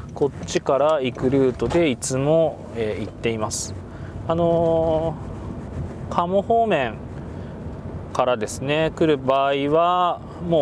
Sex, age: male, 20-39